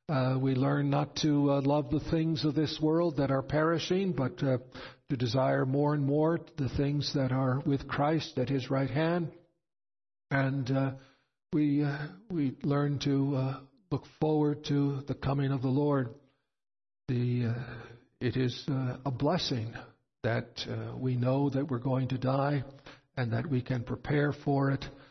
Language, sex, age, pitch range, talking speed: English, male, 60-79, 130-155 Hz, 170 wpm